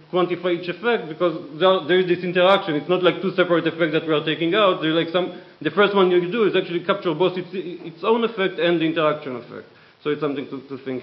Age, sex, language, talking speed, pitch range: 40-59, male, English, 250 wpm, 155-185 Hz